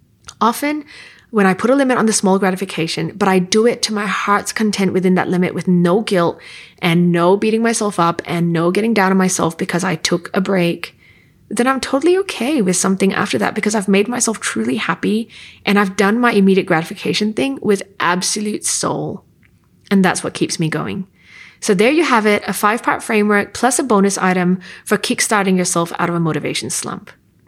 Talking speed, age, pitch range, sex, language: 195 wpm, 20-39, 175-215 Hz, female, English